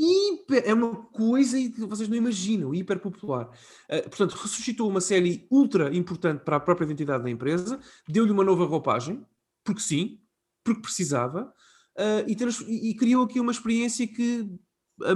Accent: Portuguese